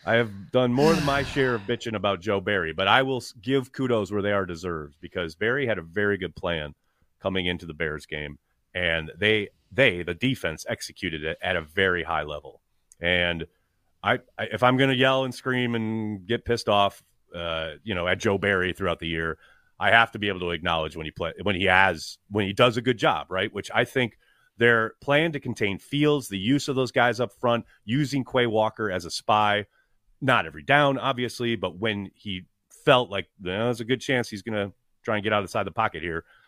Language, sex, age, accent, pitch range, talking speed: English, male, 30-49, American, 90-120 Hz, 220 wpm